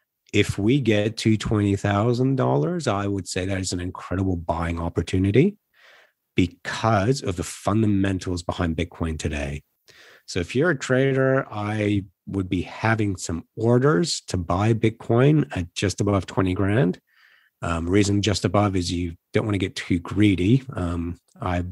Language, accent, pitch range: English, American, 90-120 Hz